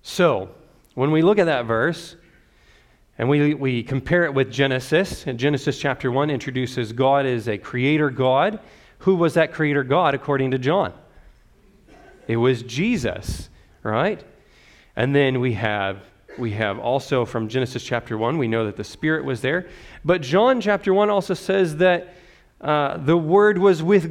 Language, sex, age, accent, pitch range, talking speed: English, male, 40-59, American, 115-160 Hz, 160 wpm